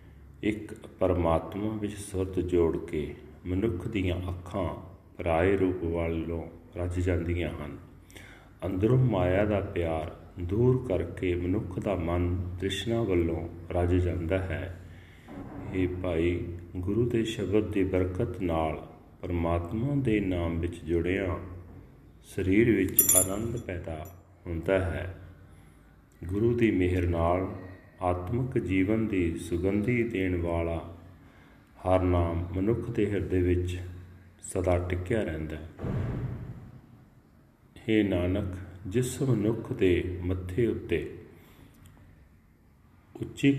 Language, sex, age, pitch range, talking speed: Punjabi, male, 40-59, 85-100 Hz, 95 wpm